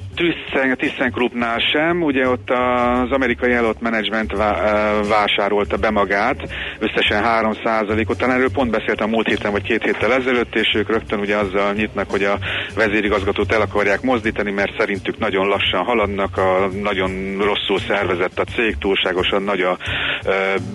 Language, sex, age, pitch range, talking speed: Hungarian, male, 40-59, 100-120 Hz, 160 wpm